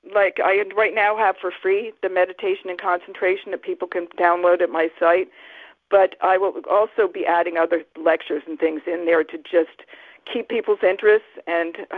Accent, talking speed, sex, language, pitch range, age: American, 180 wpm, female, English, 170-215 Hz, 50-69